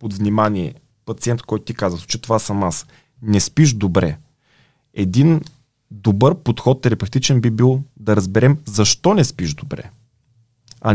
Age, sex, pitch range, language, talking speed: 20-39, male, 105-140 Hz, Bulgarian, 140 wpm